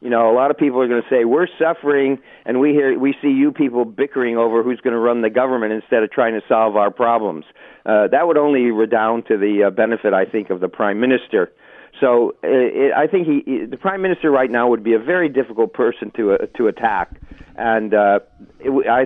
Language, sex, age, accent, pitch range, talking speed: English, male, 50-69, American, 115-140 Hz, 240 wpm